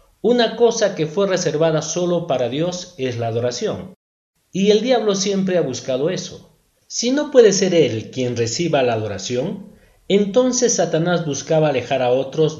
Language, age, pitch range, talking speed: Spanish, 50-69, 130-185 Hz, 155 wpm